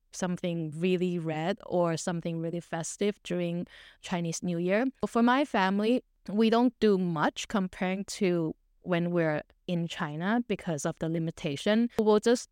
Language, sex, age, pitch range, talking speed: English, female, 20-39, 170-205 Hz, 145 wpm